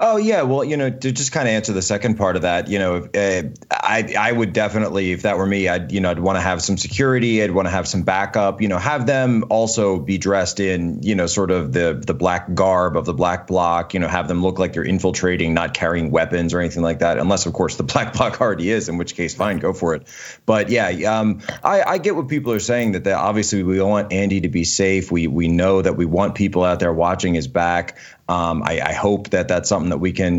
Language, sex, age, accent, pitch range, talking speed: English, male, 30-49, American, 85-105 Hz, 260 wpm